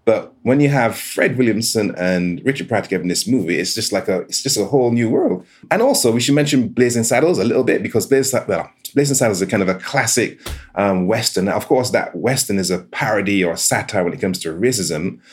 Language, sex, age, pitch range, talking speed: English, male, 30-49, 85-110 Hz, 245 wpm